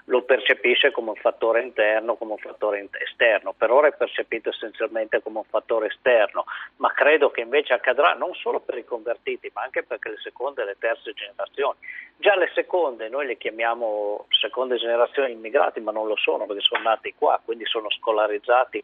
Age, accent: 50-69, native